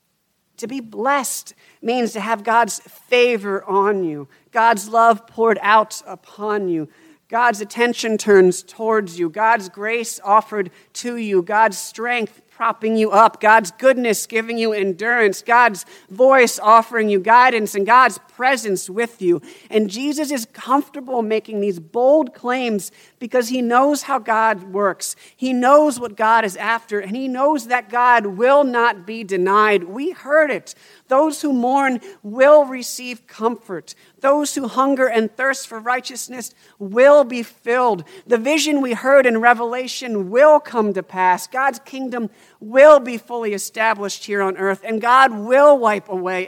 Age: 50-69